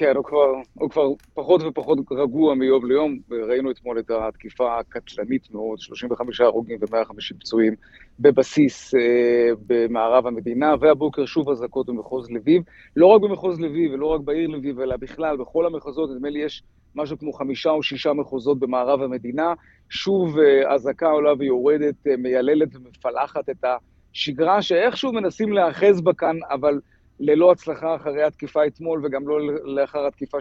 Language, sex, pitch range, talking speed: Hebrew, male, 130-160 Hz, 150 wpm